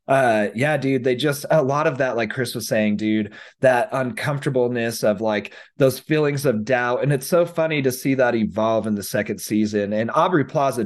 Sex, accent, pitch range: male, American, 105-130 Hz